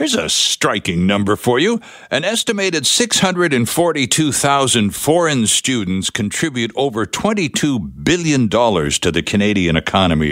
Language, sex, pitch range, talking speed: English, male, 105-160 Hz, 110 wpm